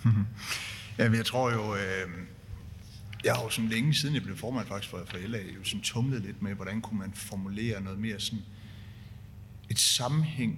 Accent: native